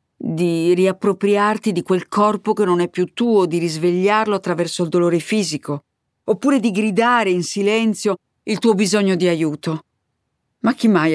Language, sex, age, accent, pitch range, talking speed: Italian, female, 50-69, native, 145-180 Hz, 155 wpm